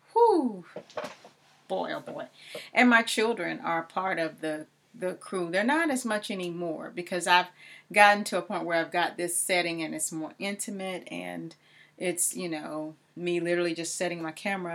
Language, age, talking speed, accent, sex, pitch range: English, 30-49, 175 wpm, American, female, 170-195 Hz